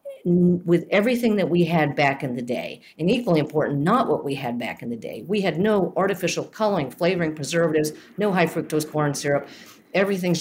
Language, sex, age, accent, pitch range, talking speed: English, female, 50-69, American, 140-165 Hz, 190 wpm